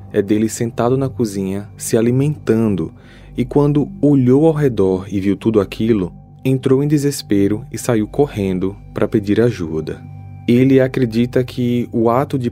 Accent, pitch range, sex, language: Brazilian, 100-130 Hz, male, Portuguese